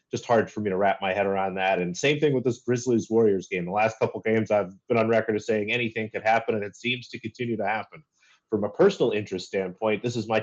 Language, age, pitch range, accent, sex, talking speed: English, 30-49, 100-115 Hz, American, male, 265 wpm